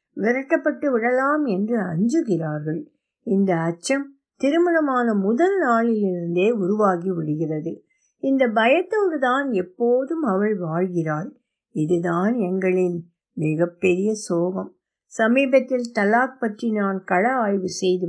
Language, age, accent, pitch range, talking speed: Tamil, 60-79, native, 190-270 Hz, 95 wpm